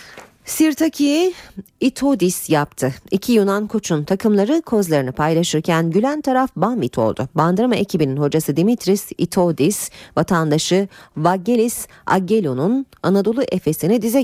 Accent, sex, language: native, female, Turkish